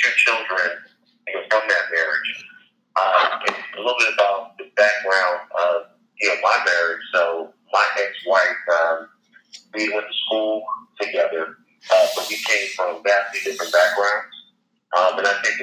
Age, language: 40-59, English